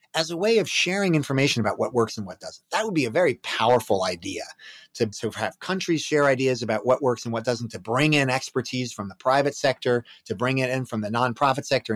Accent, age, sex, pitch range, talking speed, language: American, 30-49, male, 110-150 Hz, 235 wpm, English